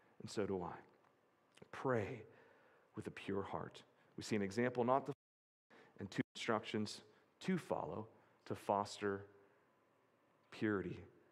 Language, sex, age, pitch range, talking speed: English, male, 40-59, 115-145 Hz, 125 wpm